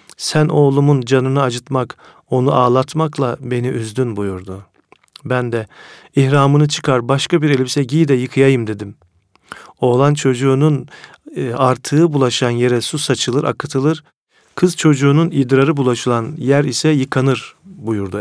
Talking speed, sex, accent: 120 wpm, male, native